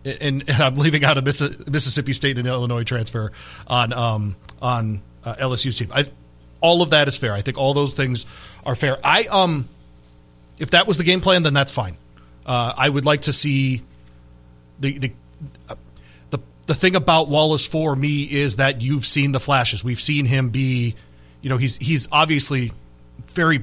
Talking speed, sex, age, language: 185 wpm, male, 30-49, English